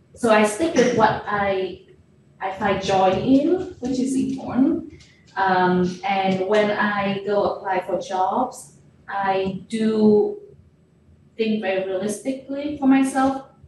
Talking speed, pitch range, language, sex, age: 125 wpm, 180-235 Hz, English, female, 20-39